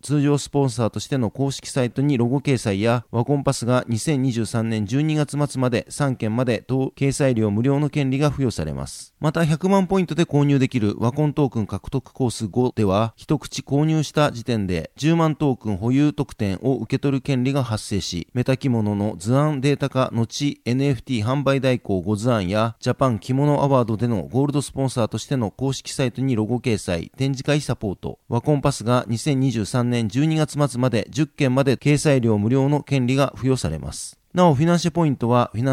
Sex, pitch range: male, 115-140 Hz